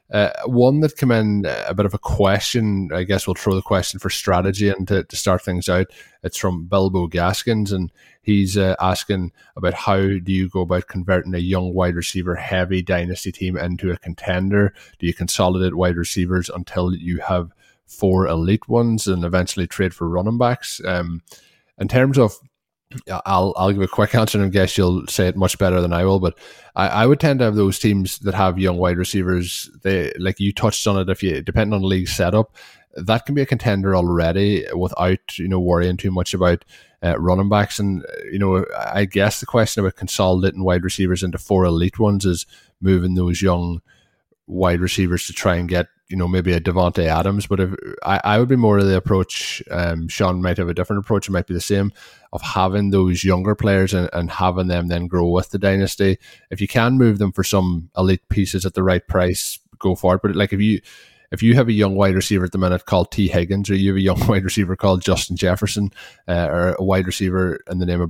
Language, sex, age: English, male, 20-39